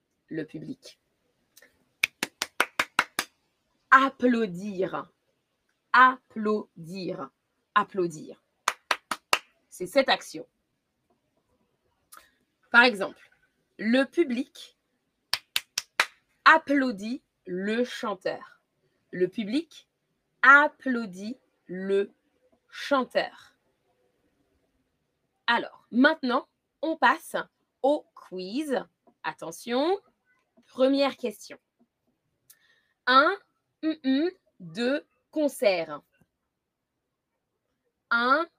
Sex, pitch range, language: female, 200-290 Hz, French